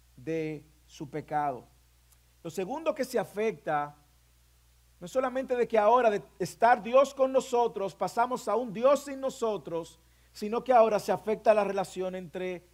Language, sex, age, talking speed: English, male, 50-69, 155 wpm